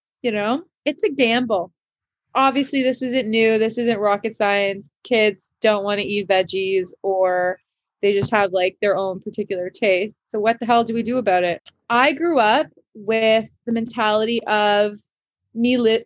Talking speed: 170 wpm